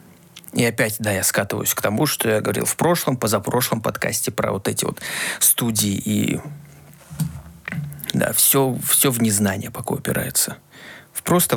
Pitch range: 105-145 Hz